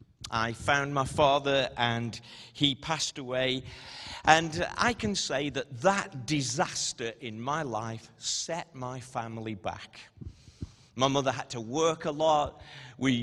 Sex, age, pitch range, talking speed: male, 40-59, 120-160 Hz, 135 wpm